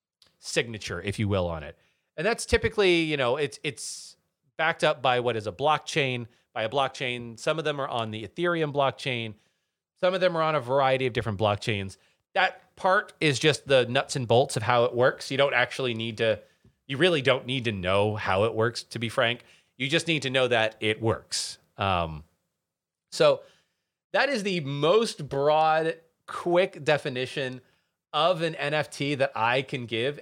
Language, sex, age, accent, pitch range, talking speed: English, male, 30-49, American, 115-160 Hz, 185 wpm